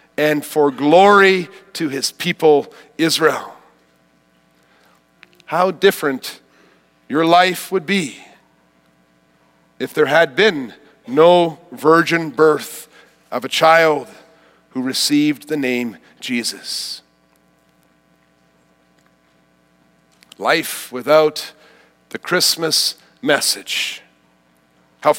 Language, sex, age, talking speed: English, male, 50-69, 80 wpm